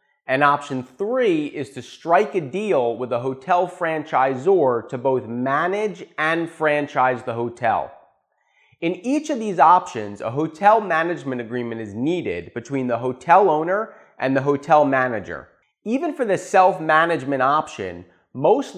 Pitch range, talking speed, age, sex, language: 130-180 Hz, 140 wpm, 30-49, male, English